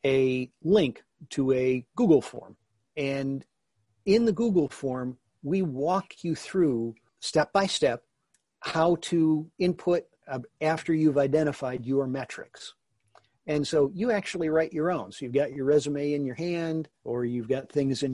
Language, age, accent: English, 50-69, American